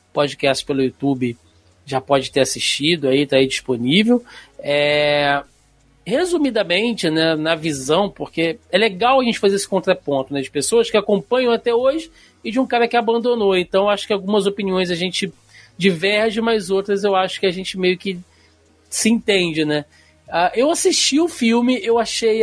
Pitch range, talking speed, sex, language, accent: 155-230 Hz, 170 wpm, male, Portuguese, Brazilian